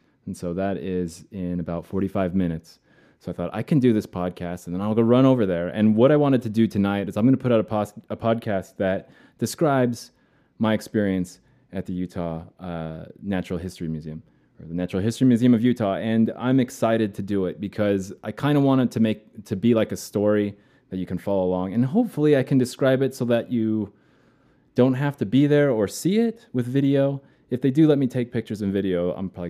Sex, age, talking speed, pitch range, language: male, 20-39, 225 wpm, 90-125 Hz, English